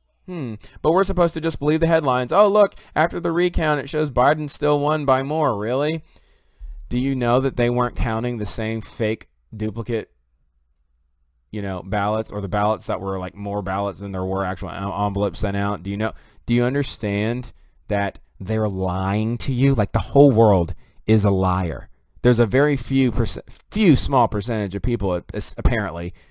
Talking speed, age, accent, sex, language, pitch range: 180 wpm, 30-49, American, male, English, 95-120 Hz